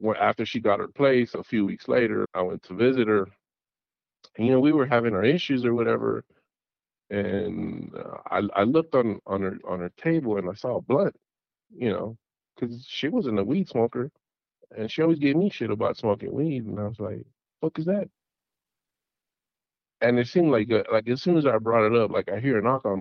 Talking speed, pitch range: 215 wpm, 105-140 Hz